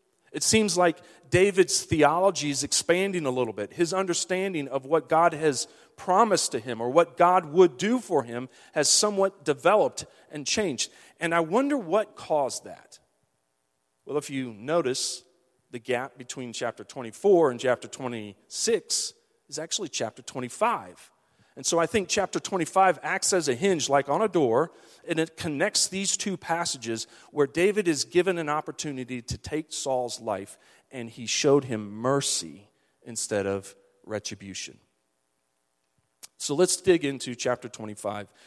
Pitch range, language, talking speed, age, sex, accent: 115-175 Hz, English, 150 wpm, 40-59, male, American